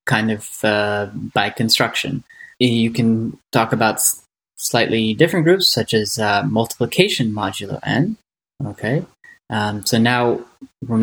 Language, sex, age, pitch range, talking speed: English, male, 10-29, 110-130 Hz, 125 wpm